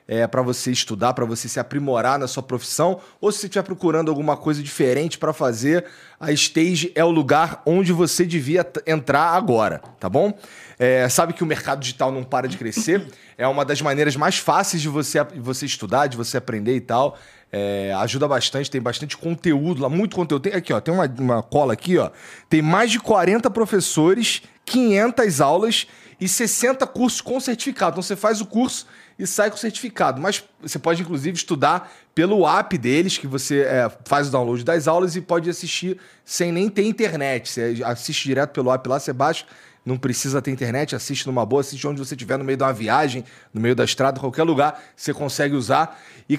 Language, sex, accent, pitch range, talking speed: Portuguese, male, Brazilian, 135-180 Hz, 205 wpm